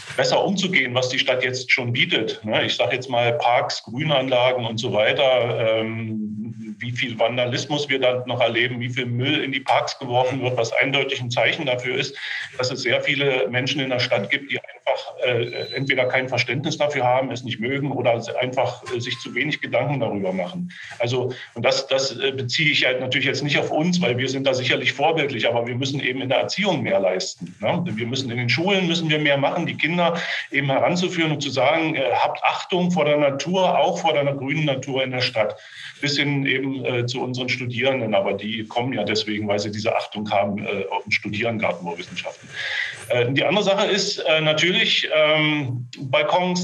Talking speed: 195 wpm